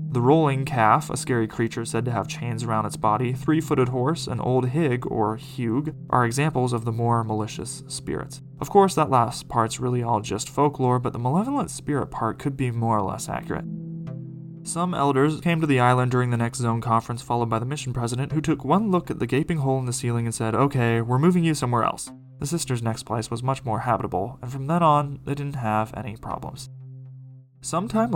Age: 20-39